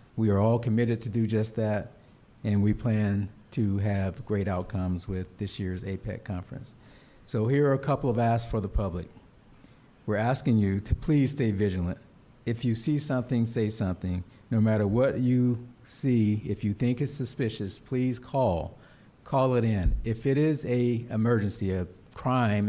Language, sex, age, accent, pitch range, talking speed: English, male, 50-69, American, 100-125 Hz, 170 wpm